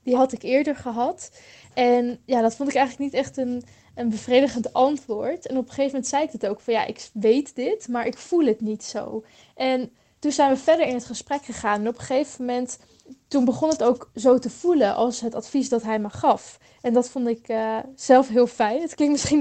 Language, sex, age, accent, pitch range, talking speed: Dutch, female, 10-29, Dutch, 230-265 Hz, 235 wpm